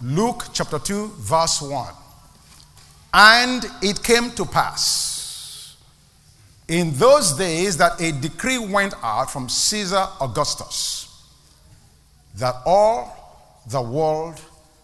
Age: 50-69